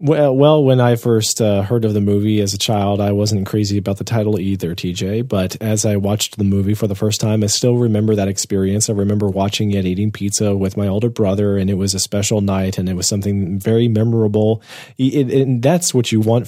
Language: English